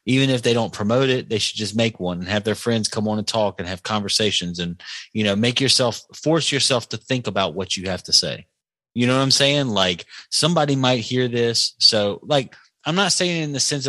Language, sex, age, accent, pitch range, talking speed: English, male, 30-49, American, 100-135 Hz, 240 wpm